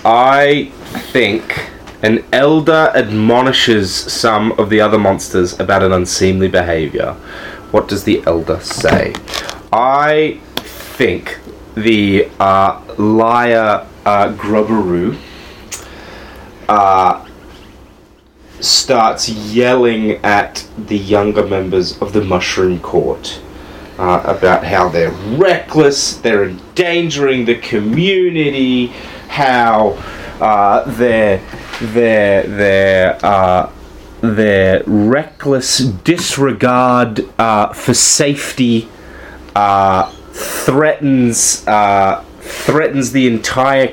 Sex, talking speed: male, 85 wpm